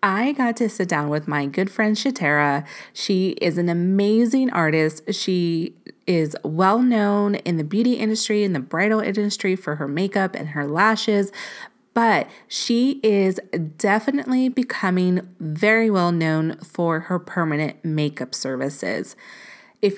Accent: American